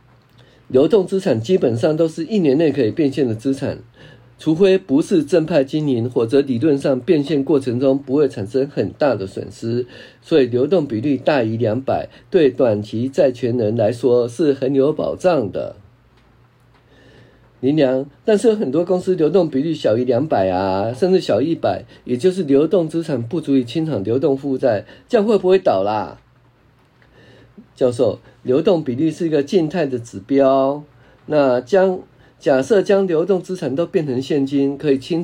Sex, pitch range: male, 125-160 Hz